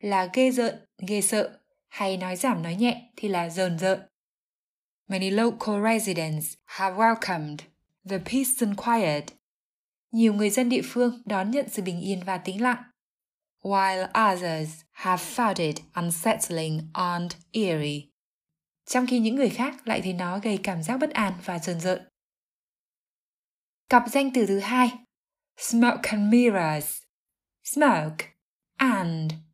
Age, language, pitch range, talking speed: 20-39, Vietnamese, 185-245 Hz, 140 wpm